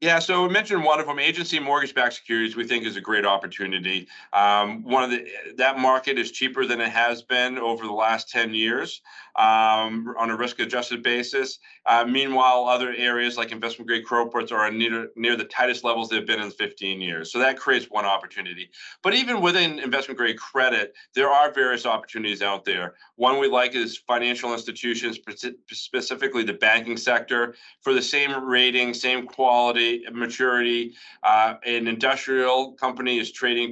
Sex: male